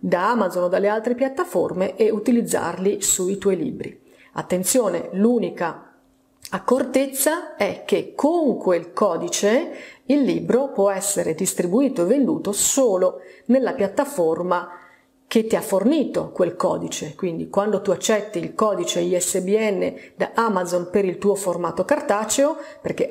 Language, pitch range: Italian, 180-225 Hz